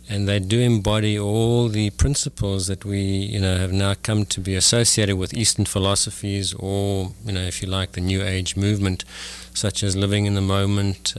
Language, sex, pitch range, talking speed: English, male, 95-110 Hz, 195 wpm